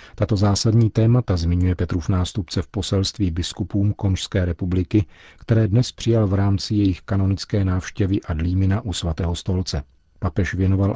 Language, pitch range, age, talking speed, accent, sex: Czech, 90-105 Hz, 50-69, 135 wpm, native, male